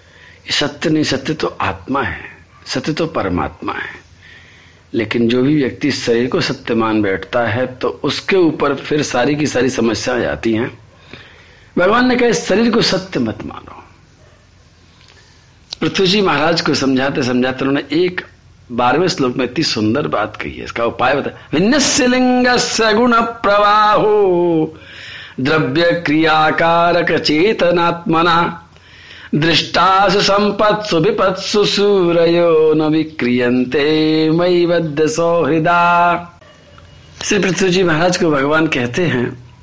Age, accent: 50-69, native